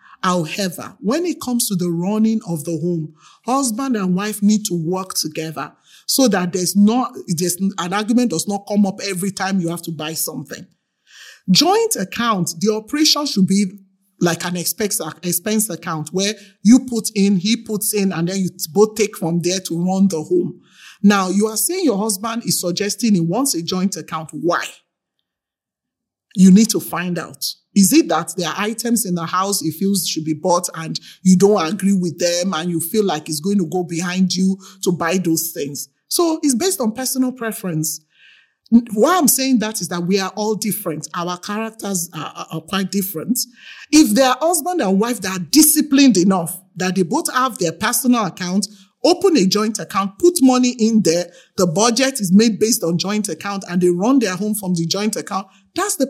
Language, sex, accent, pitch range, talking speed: English, male, Nigerian, 175-225 Hz, 195 wpm